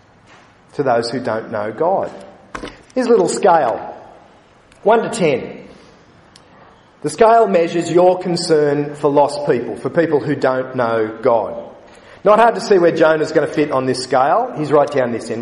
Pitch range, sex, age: 115-170 Hz, male, 40-59